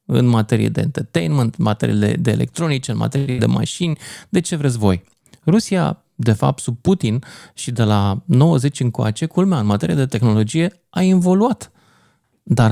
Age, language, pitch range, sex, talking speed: 20-39, Romanian, 115-165 Hz, male, 160 wpm